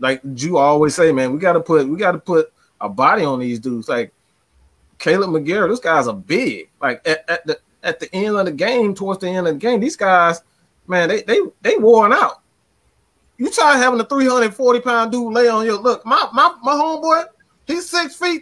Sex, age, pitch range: male, 20-39, 170-255 Hz